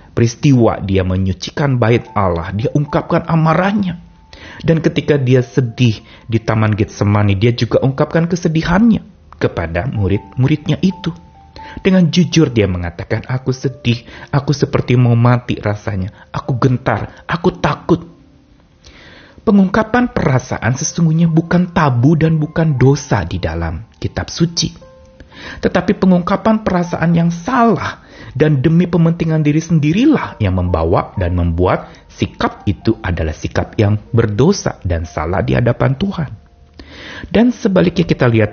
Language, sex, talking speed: Indonesian, male, 120 wpm